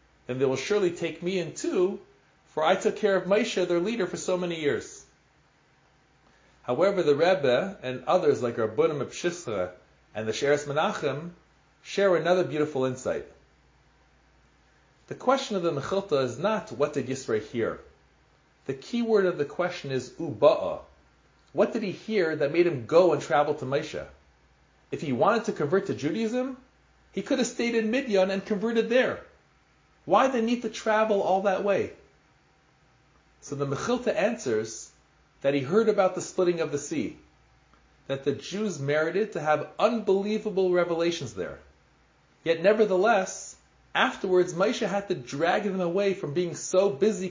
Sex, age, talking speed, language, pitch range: male, 40-59, 160 wpm, English, 155-210 Hz